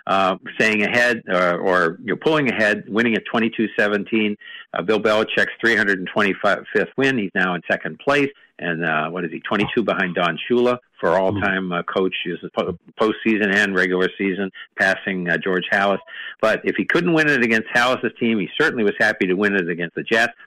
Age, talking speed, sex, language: 50-69, 180 wpm, male, English